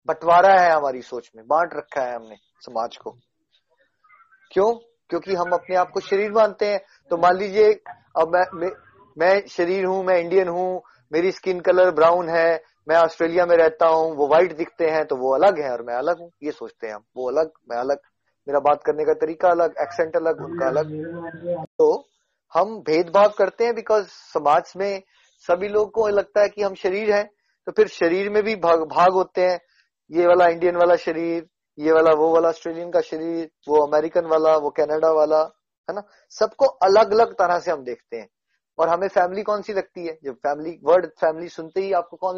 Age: 20-39